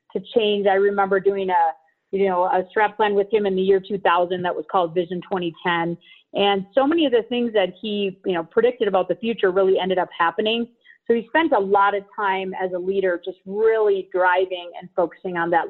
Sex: female